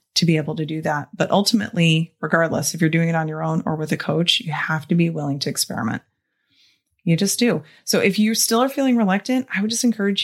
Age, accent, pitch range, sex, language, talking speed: 30-49, American, 160-230 Hz, female, English, 240 wpm